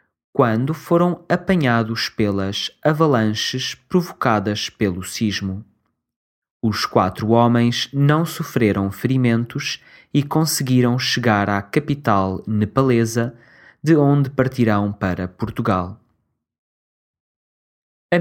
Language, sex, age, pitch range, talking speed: English, male, 20-39, 95-130 Hz, 85 wpm